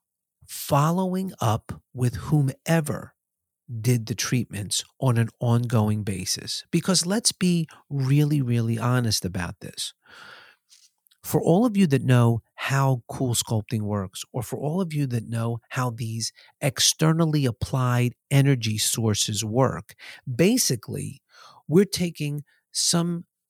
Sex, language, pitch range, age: male, English, 115-155 Hz, 50-69